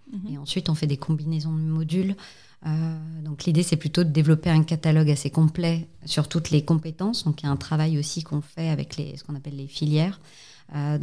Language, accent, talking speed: French, French, 220 wpm